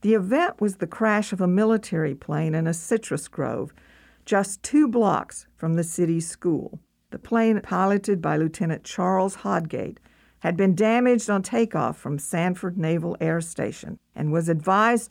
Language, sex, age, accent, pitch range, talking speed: English, female, 50-69, American, 165-215 Hz, 160 wpm